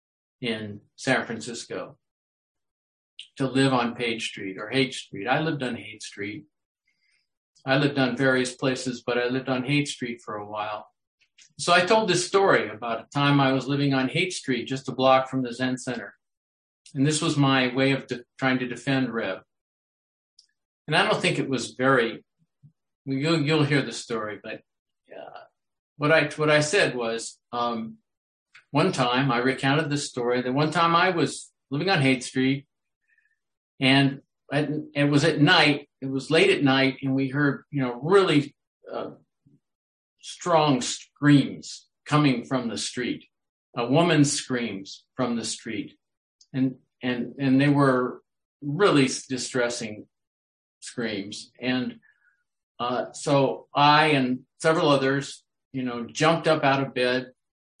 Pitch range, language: 125-145 Hz, English